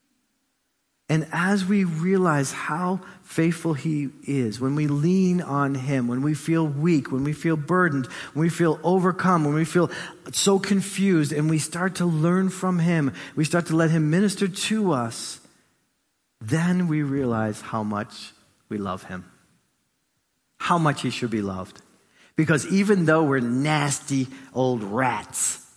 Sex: male